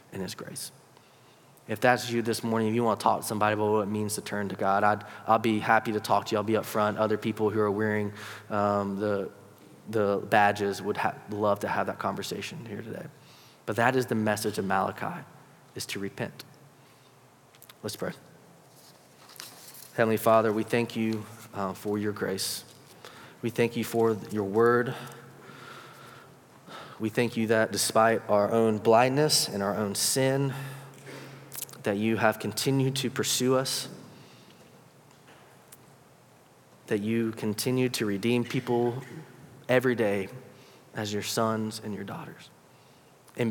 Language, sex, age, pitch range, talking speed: English, male, 20-39, 105-120 Hz, 155 wpm